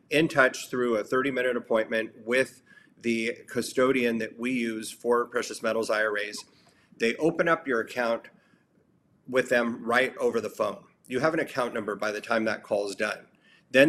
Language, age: English, 30-49